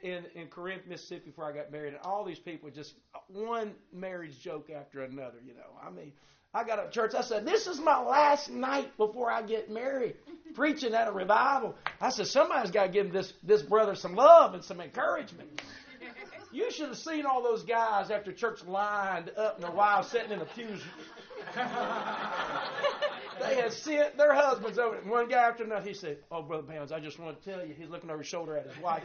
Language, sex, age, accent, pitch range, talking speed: English, male, 40-59, American, 180-235 Hz, 215 wpm